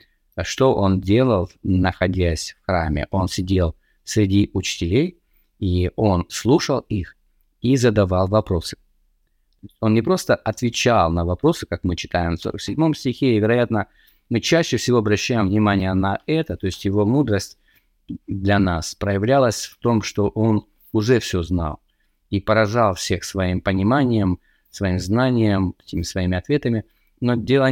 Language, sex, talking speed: Russian, male, 135 wpm